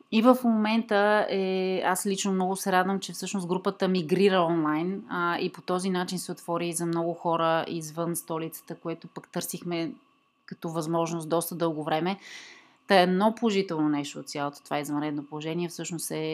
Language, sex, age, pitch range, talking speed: Bulgarian, female, 30-49, 170-205 Hz, 175 wpm